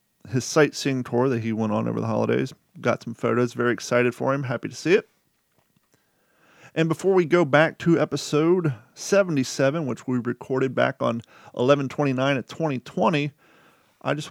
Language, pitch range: English, 125-155 Hz